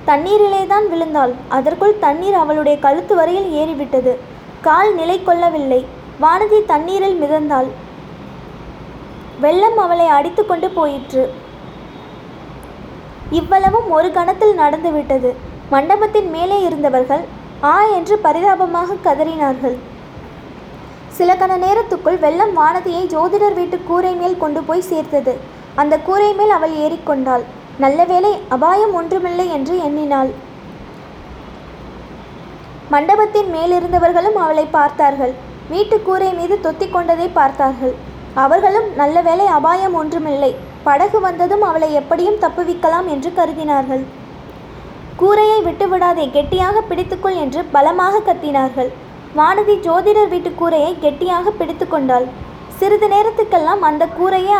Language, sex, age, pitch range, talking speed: Tamil, female, 20-39, 295-380 Hz, 100 wpm